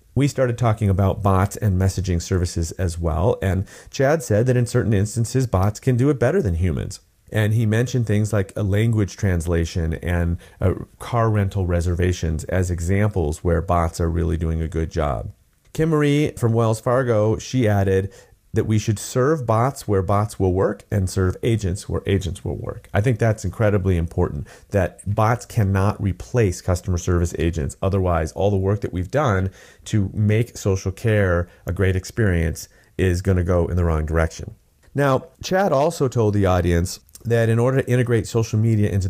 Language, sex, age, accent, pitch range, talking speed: English, male, 40-59, American, 90-110 Hz, 180 wpm